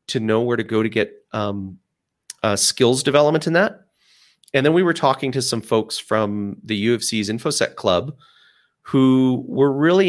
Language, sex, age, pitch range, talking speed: English, male, 30-49, 105-130 Hz, 170 wpm